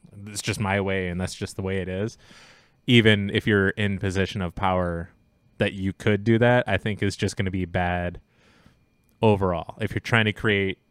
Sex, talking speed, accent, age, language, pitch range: male, 205 wpm, American, 20-39, English, 95-105 Hz